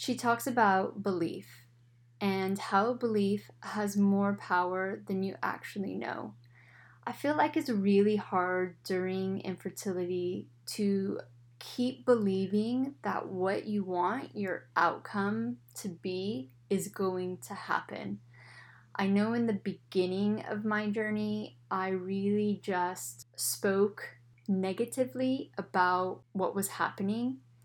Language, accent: English, American